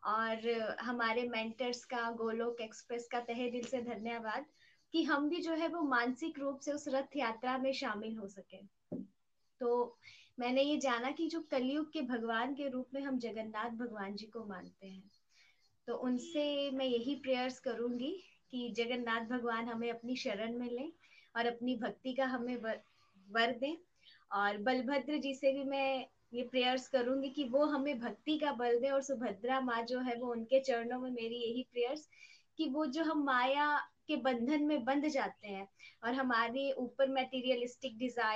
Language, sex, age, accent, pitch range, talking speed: Hindi, female, 20-39, native, 230-270 Hz, 150 wpm